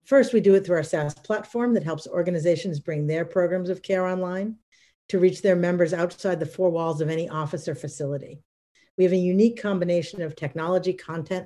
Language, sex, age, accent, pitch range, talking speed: English, female, 50-69, American, 155-185 Hz, 200 wpm